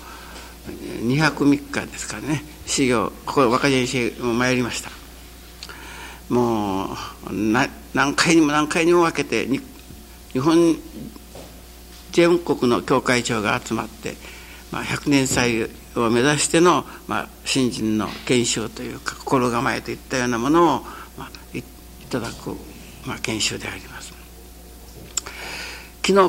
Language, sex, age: Japanese, male, 60-79